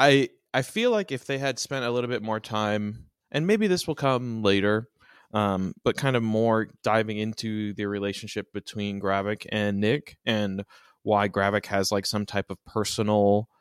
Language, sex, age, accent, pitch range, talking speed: English, male, 20-39, American, 105-155 Hz, 180 wpm